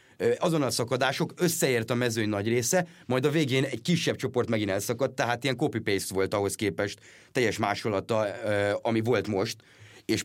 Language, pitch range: Hungarian, 100-130 Hz